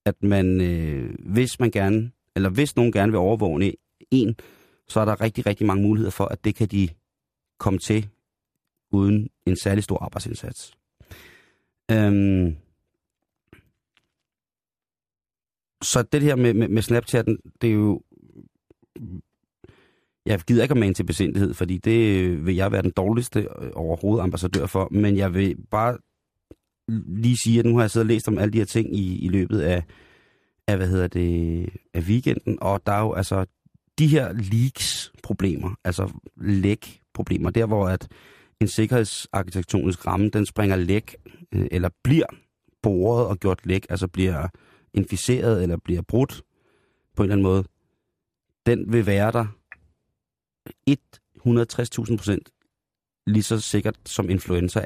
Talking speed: 150 wpm